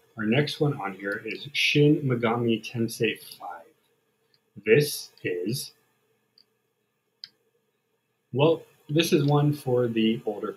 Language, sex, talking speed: English, male, 110 wpm